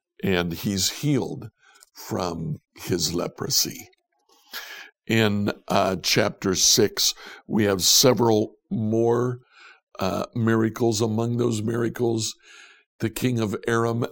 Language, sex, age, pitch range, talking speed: English, male, 60-79, 100-125 Hz, 100 wpm